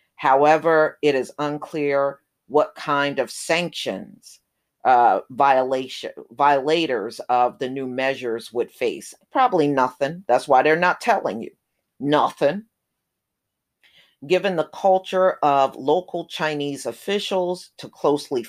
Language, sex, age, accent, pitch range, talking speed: English, female, 50-69, American, 135-180 Hz, 110 wpm